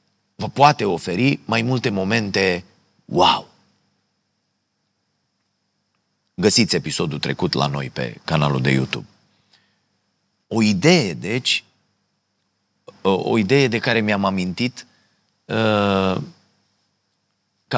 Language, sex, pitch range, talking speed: Romanian, male, 90-125 Hz, 90 wpm